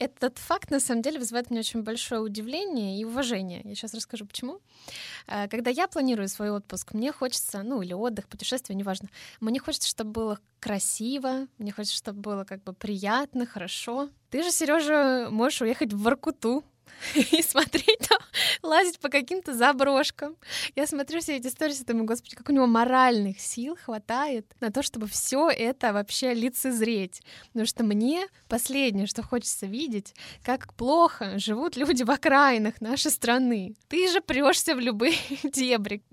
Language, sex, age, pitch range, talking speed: Russian, female, 20-39, 215-275 Hz, 160 wpm